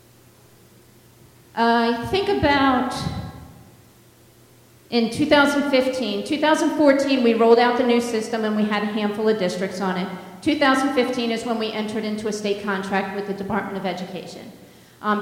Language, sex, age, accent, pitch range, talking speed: English, female, 40-59, American, 205-245 Hz, 140 wpm